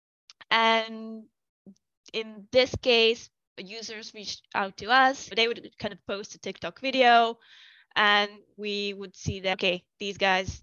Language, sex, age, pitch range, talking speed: English, female, 10-29, 195-230 Hz, 140 wpm